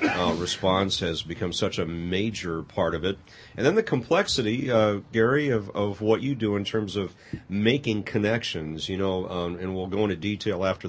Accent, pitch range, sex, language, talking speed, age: American, 95-120 Hz, male, English, 195 wpm, 40-59